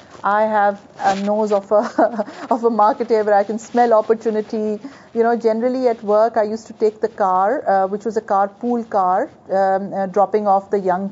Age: 40-59